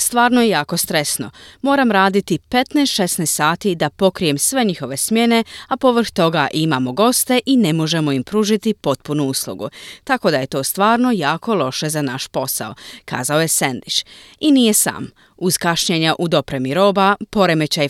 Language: Croatian